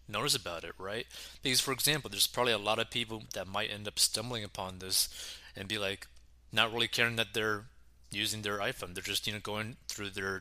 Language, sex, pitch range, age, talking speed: English, male, 65-110 Hz, 20-39, 220 wpm